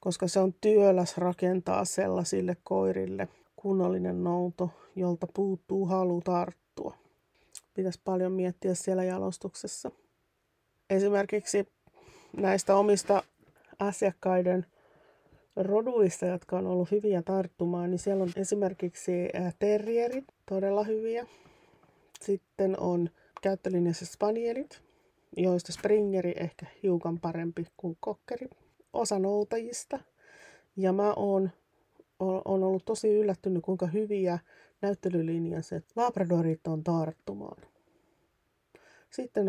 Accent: native